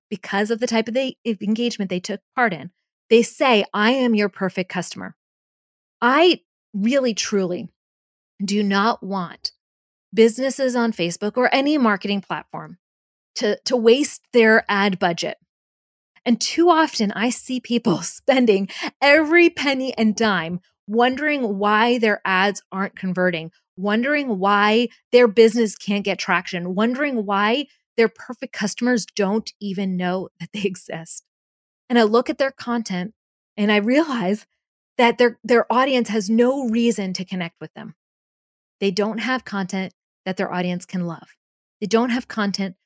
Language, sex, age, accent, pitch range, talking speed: English, female, 30-49, American, 190-240 Hz, 145 wpm